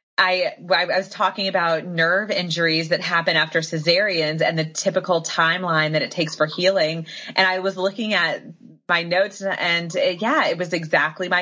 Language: English